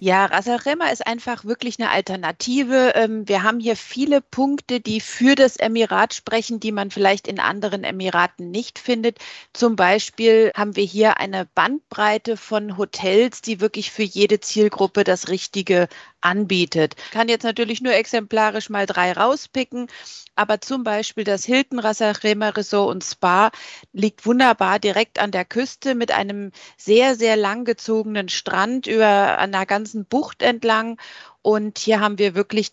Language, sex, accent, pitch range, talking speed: German, female, German, 200-235 Hz, 150 wpm